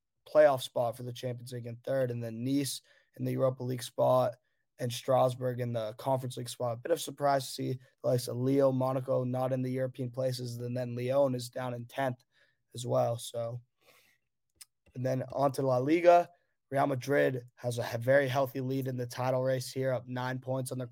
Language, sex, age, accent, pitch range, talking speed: English, male, 20-39, American, 125-135 Hz, 205 wpm